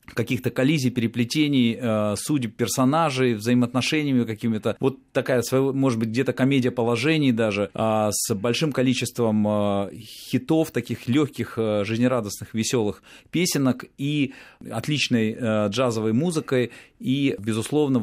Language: Russian